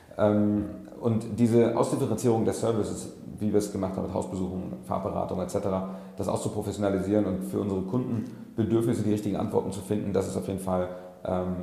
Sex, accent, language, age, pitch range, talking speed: male, German, German, 30-49, 95-110 Hz, 170 wpm